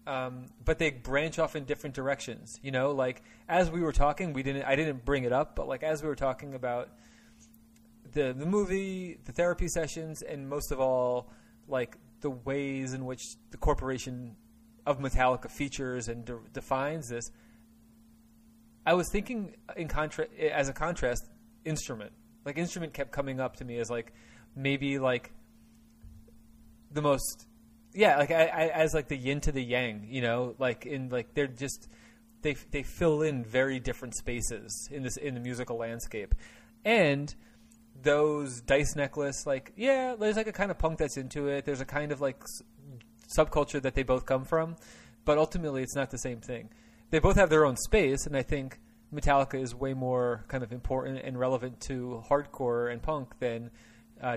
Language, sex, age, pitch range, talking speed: English, male, 30-49, 120-150 Hz, 180 wpm